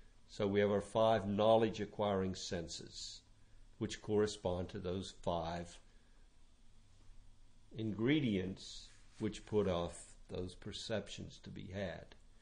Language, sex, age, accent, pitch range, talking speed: English, male, 60-79, American, 90-115 Hz, 105 wpm